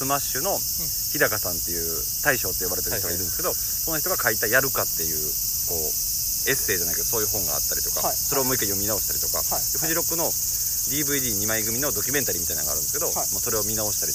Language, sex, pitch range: Japanese, male, 85-125 Hz